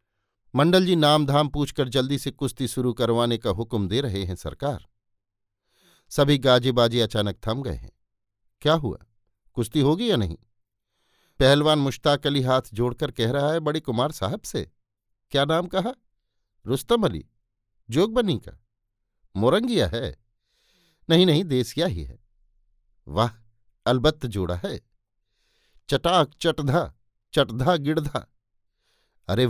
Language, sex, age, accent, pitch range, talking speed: Hindi, male, 50-69, native, 105-145 Hz, 125 wpm